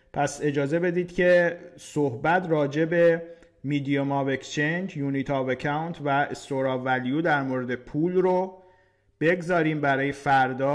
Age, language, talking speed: 50-69, Persian, 130 wpm